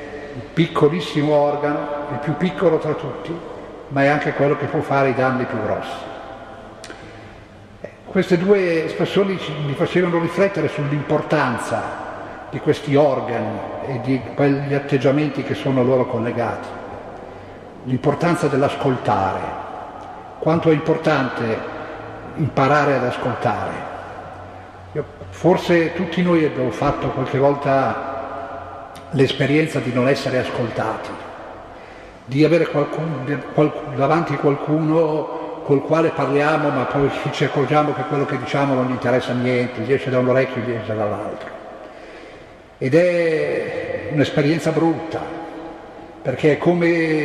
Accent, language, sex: native, Italian, male